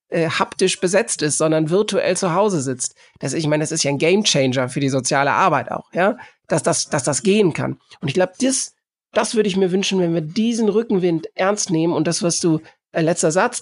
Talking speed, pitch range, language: 225 wpm, 160-195 Hz, German